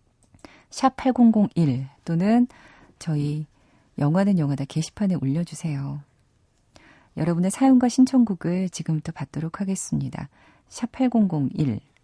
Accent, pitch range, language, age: native, 140-190 Hz, Korean, 40-59